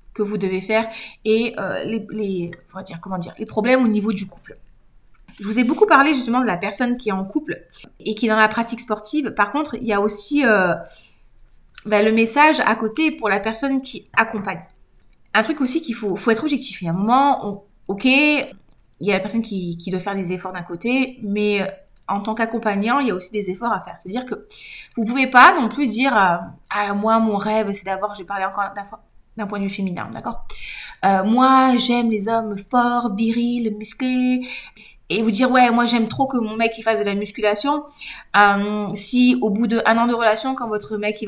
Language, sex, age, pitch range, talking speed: French, female, 30-49, 200-250 Hz, 235 wpm